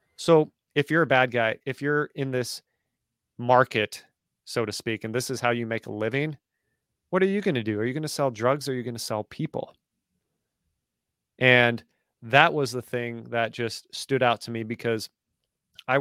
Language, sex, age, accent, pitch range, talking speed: English, male, 30-49, American, 110-125 Hz, 200 wpm